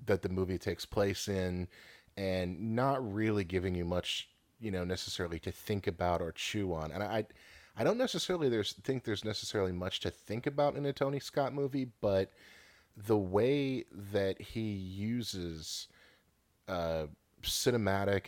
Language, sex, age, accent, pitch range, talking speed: English, male, 30-49, American, 85-105 Hz, 155 wpm